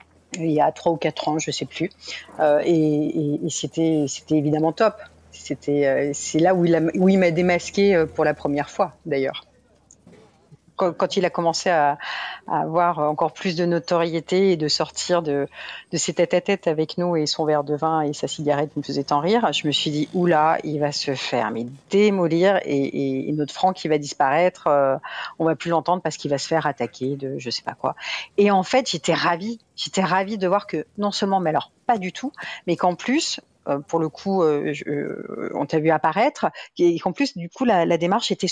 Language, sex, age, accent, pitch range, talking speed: French, female, 50-69, French, 155-195 Hz, 220 wpm